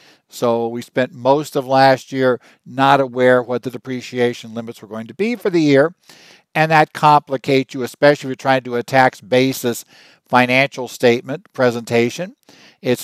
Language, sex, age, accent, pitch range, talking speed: English, male, 60-79, American, 120-135 Hz, 170 wpm